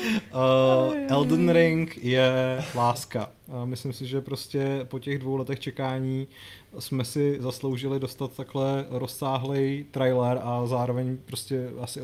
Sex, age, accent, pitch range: male, 30-49, native, 125-140 Hz